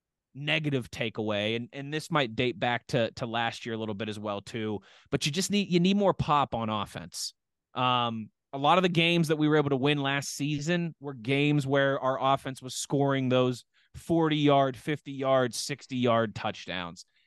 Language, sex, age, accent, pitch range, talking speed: English, male, 20-39, American, 120-145 Hz, 200 wpm